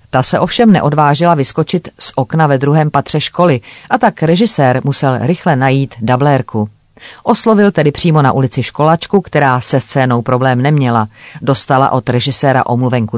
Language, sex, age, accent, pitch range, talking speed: Czech, female, 40-59, native, 130-160 Hz, 150 wpm